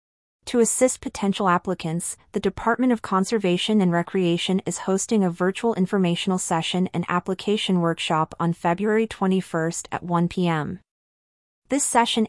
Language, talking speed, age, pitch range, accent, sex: English, 130 wpm, 30-49, 175-205 Hz, American, female